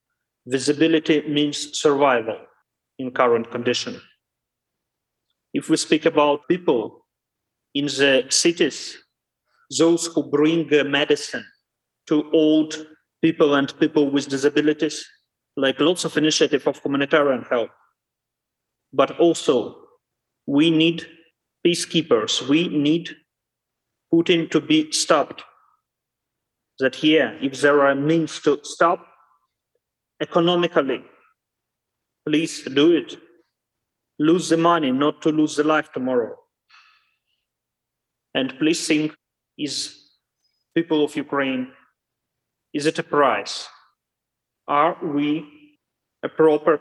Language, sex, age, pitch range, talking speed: English, male, 30-49, 140-165 Hz, 105 wpm